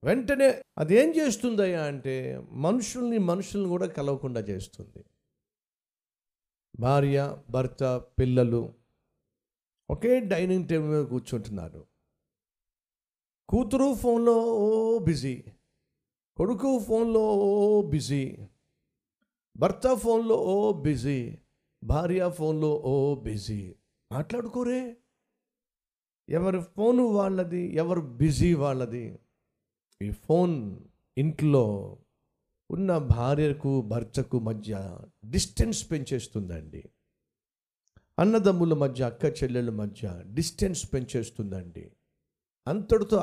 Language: Telugu